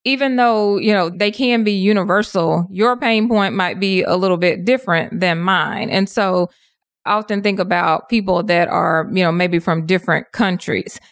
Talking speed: 185 wpm